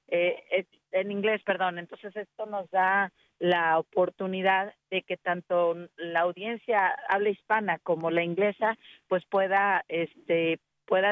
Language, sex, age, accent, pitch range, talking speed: Spanish, female, 40-59, Mexican, 185-220 Hz, 130 wpm